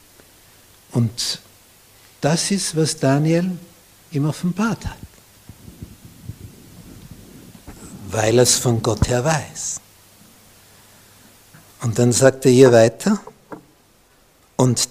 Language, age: German, 60-79